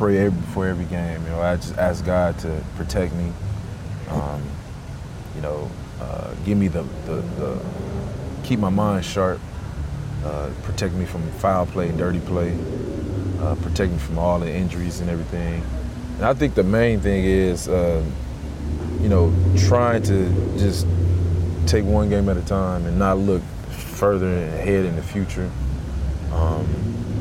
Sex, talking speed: male, 160 wpm